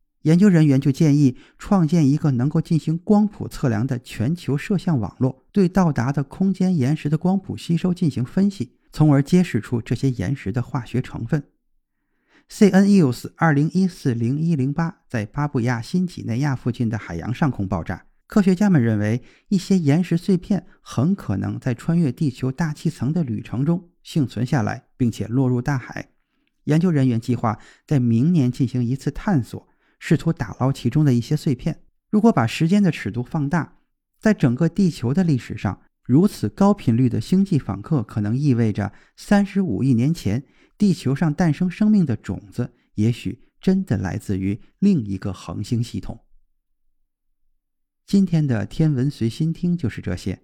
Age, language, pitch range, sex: 50-69, Chinese, 115-170 Hz, male